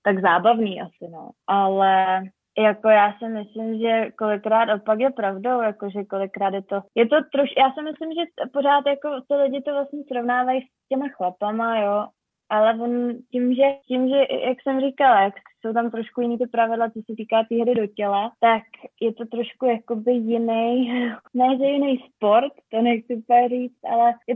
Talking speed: 185 wpm